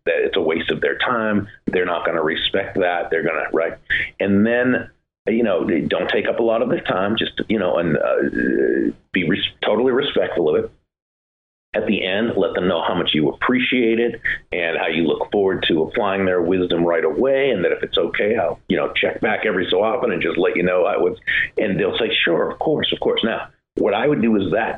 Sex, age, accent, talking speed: male, 50-69, American, 235 wpm